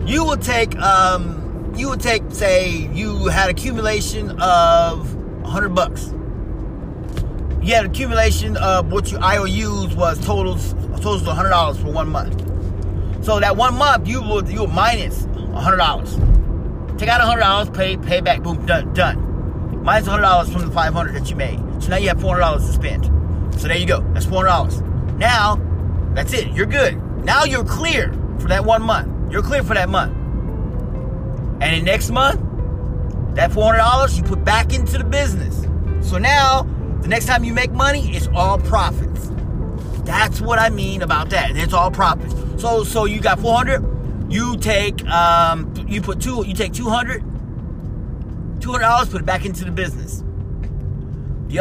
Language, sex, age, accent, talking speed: English, male, 30-49, American, 165 wpm